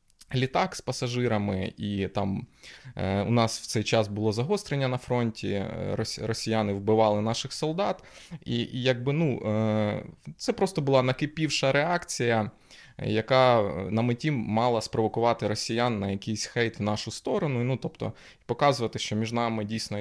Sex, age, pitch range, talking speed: male, 20-39, 105-130 Hz, 140 wpm